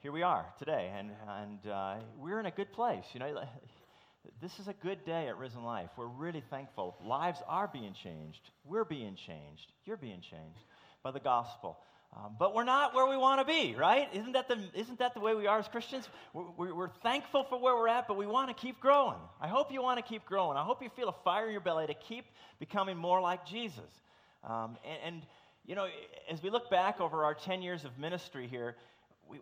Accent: American